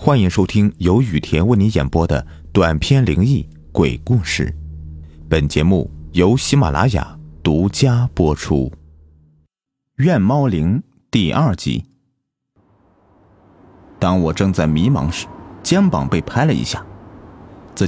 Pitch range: 90-120 Hz